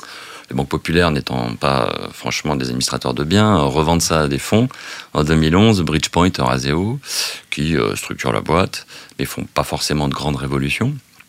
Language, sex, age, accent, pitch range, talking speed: French, male, 40-59, French, 70-85 Hz, 170 wpm